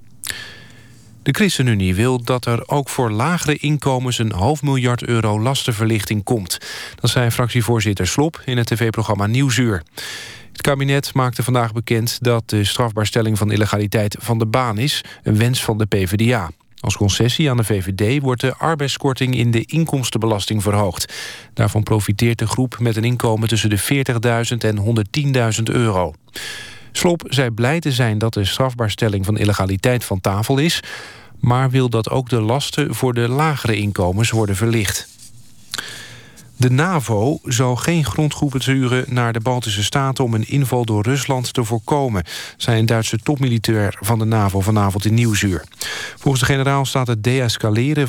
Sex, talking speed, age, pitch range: male, 155 wpm, 40-59, 110-130 Hz